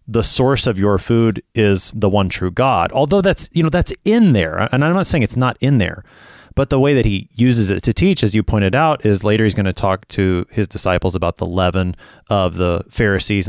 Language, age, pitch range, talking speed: English, 30-49, 100-130 Hz, 235 wpm